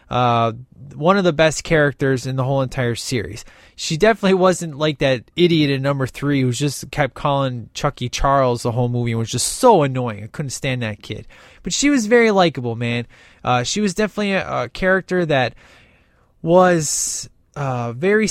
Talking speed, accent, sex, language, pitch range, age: 185 wpm, American, male, English, 130-175 Hz, 20-39